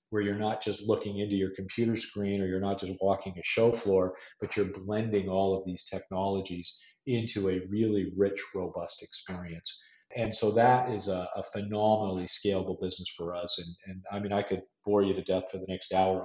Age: 40-59